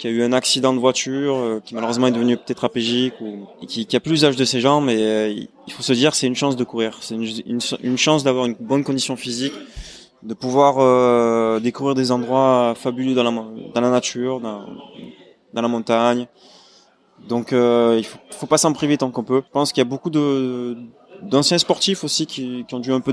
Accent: French